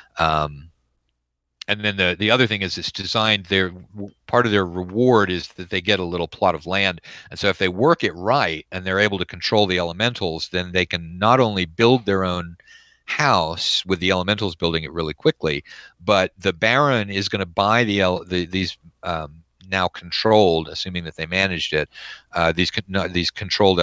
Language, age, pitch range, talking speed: English, 50-69, 90-115 Hz, 195 wpm